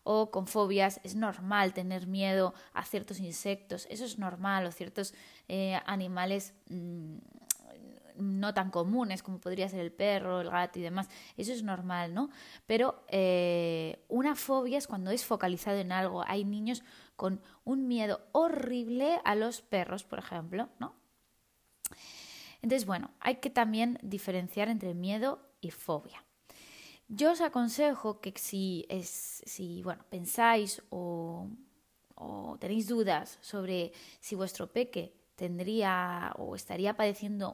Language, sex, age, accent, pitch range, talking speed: Spanish, female, 20-39, Spanish, 185-230 Hz, 135 wpm